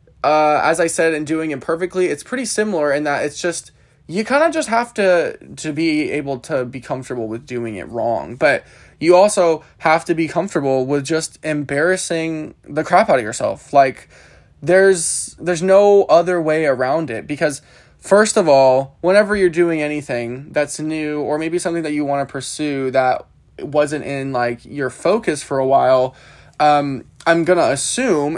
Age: 20-39